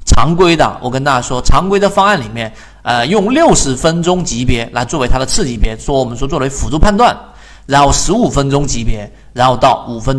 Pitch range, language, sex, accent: 120-175 Hz, Chinese, male, native